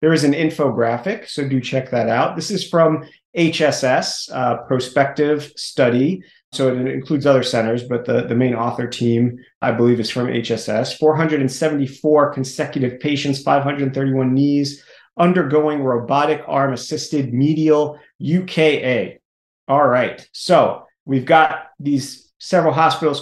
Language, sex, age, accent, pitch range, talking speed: English, male, 40-59, American, 125-155 Hz, 130 wpm